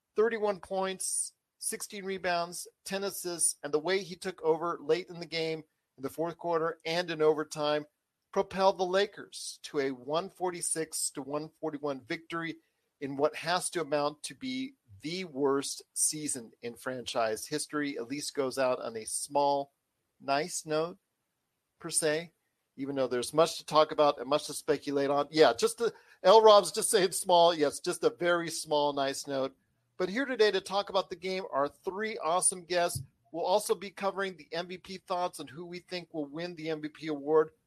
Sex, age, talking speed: male, 40-59, 180 wpm